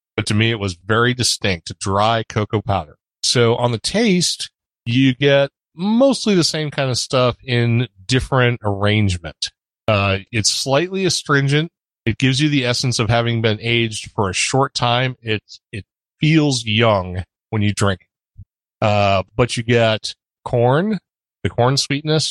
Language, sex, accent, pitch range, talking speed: English, male, American, 105-140 Hz, 155 wpm